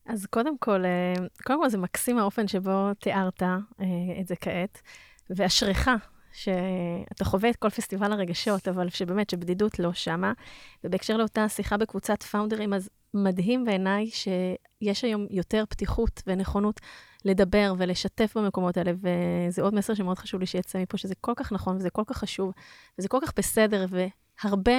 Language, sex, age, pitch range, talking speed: Hebrew, female, 20-39, 185-220 Hz, 155 wpm